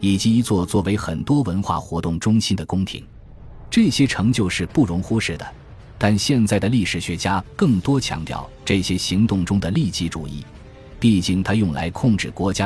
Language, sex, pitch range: Chinese, male, 85-115 Hz